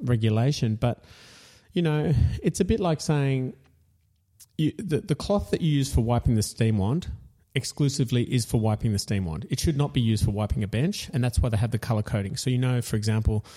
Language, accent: English, Australian